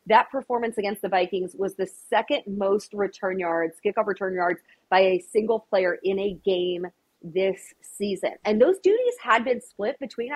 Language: English